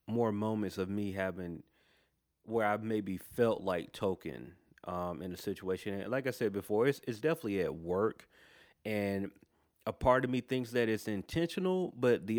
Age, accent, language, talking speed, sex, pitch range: 30-49, American, English, 175 wpm, male, 95-115 Hz